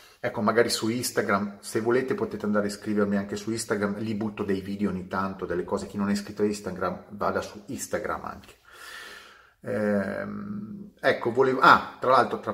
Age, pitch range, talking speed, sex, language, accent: 30-49, 105-135 Hz, 180 wpm, male, Italian, native